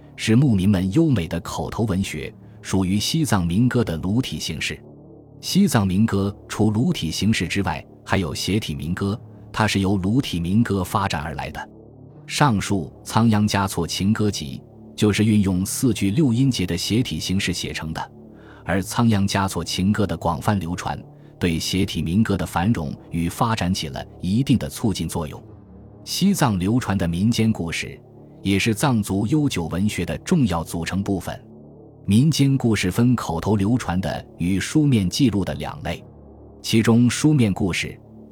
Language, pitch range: Chinese, 90-115 Hz